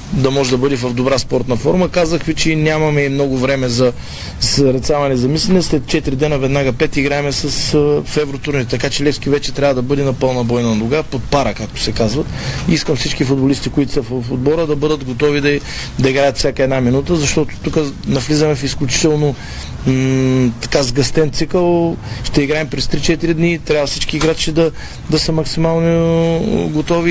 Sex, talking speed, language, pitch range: male, 175 wpm, Bulgarian, 130-155 Hz